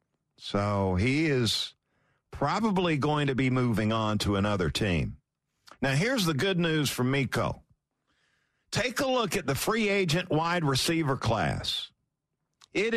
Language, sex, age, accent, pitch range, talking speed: English, male, 50-69, American, 115-175 Hz, 140 wpm